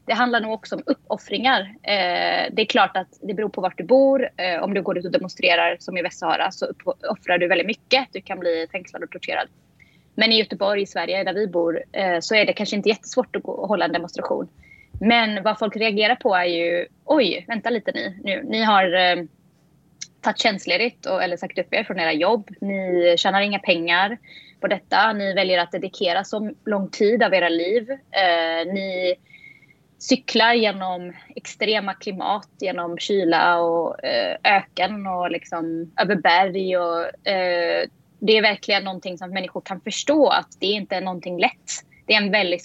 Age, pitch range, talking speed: 20-39, 180-220 Hz, 190 wpm